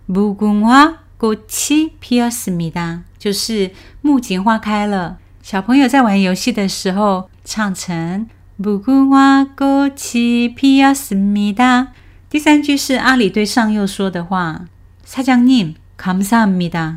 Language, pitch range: Chinese, 175-235 Hz